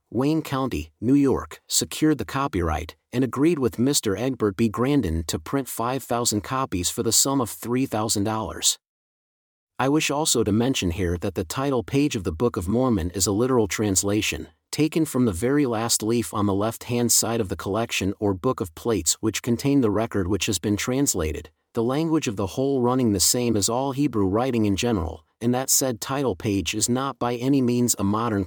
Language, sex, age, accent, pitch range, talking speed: English, male, 40-59, American, 100-130 Hz, 200 wpm